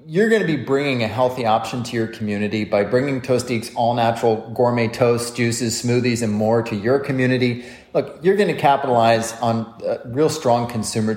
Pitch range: 110-145 Hz